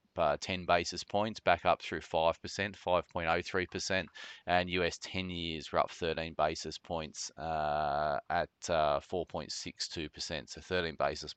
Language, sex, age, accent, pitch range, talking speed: English, male, 20-39, Australian, 75-85 Hz, 130 wpm